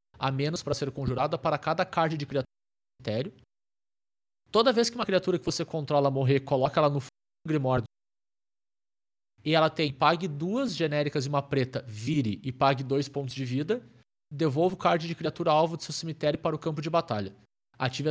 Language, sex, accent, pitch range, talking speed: Portuguese, male, Brazilian, 140-175 Hz, 185 wpm